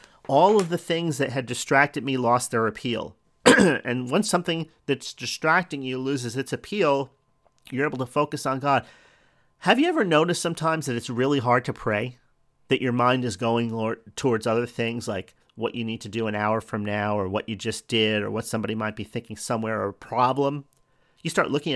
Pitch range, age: 115-145 Hz, 40-59